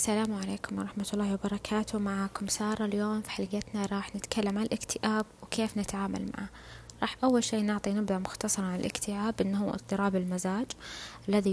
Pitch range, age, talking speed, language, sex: 190-215 Hz, 20-39, 150 wpm, Arabic, female